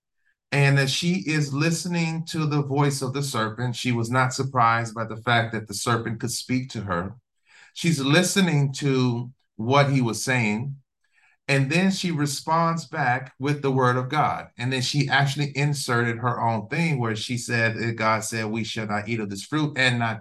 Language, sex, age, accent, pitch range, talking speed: English, male, 30-49, American, 115-145 Hz, 190 wpm